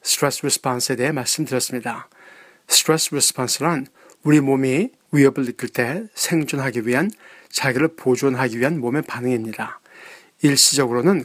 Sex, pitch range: male, 125-155 Hz